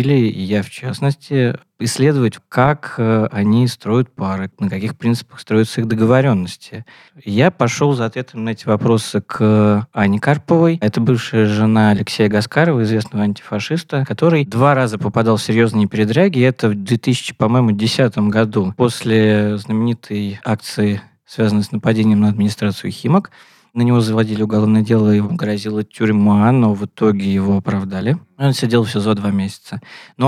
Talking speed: 145 wpm